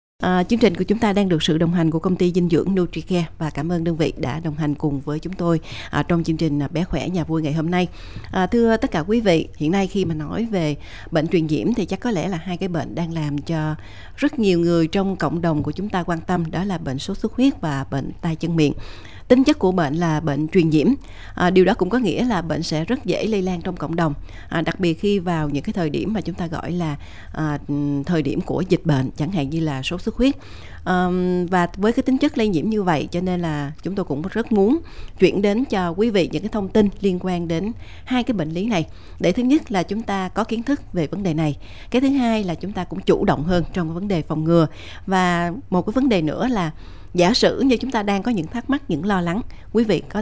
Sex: female